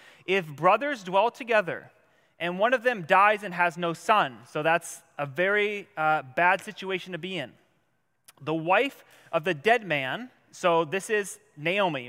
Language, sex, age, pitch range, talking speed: English, male, 30-49, 165-210 Hz, 165 wpm